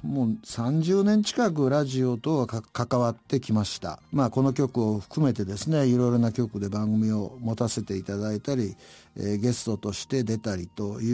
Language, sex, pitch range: Japanese, male, 110-165 Hz